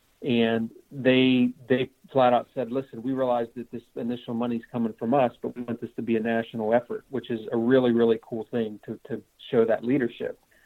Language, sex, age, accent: English, male, 40-59, American